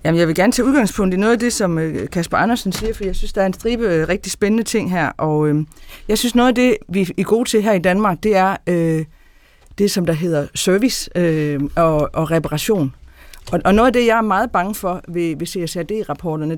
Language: Danish